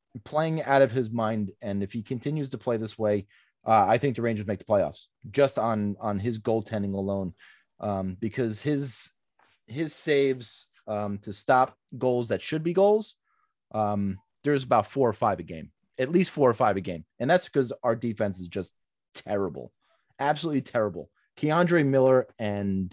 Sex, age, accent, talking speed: male, 30-49, American, 180 wpm